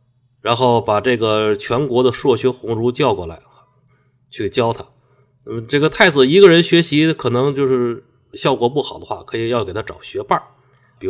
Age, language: 30-49, Chinese